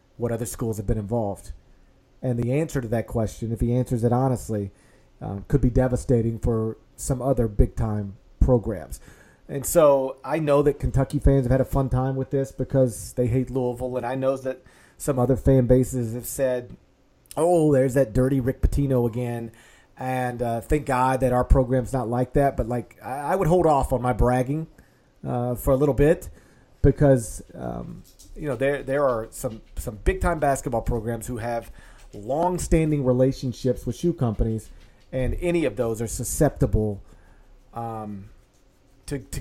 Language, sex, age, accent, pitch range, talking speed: English, male, 40-59, American, 115-135 Hz, 175 wpm